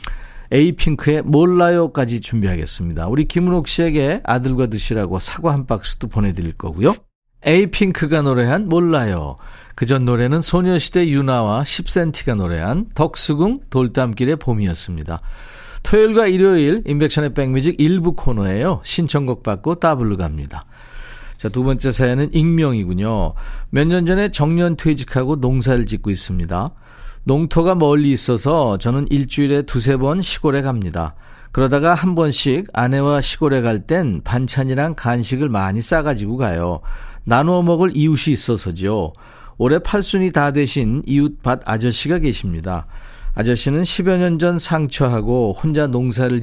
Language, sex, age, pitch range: Korean, male, 40-59, 115-160 Hz